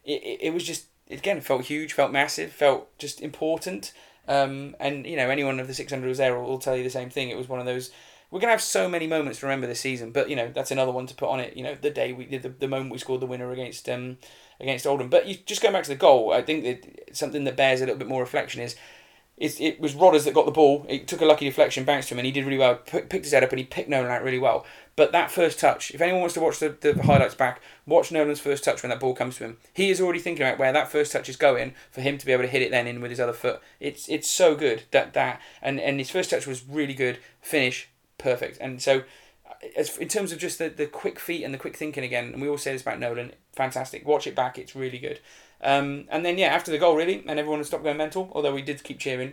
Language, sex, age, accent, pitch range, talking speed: English, male, 30-49, British, 130-155 Hz, 290 wpm